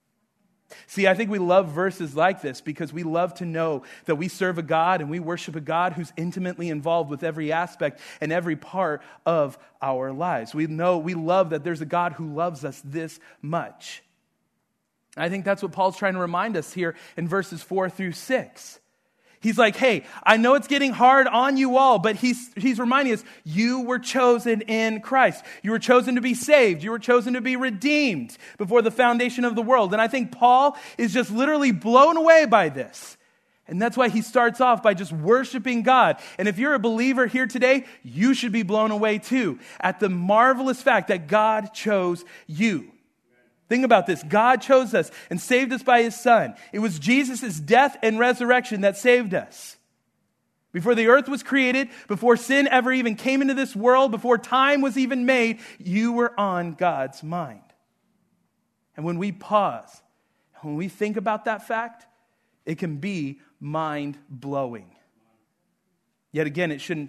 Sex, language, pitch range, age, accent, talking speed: male, English, 175-245 Hz, 40-59, American, 185 wpm